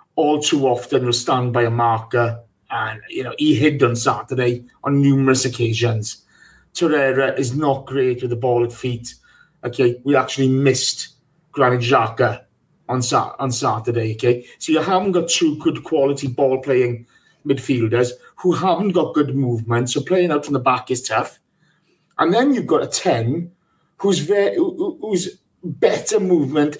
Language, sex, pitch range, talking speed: English, male, 130-185 Hz, 150 wpm